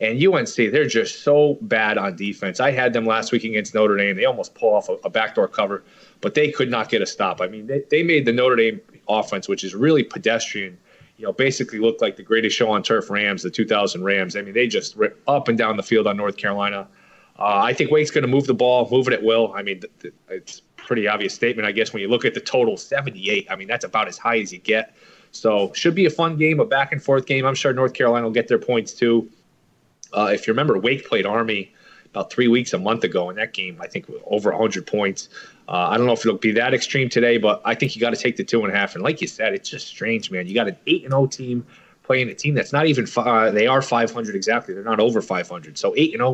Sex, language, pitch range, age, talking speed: male, English, 105-135 Hz, 30-49, 270 wpm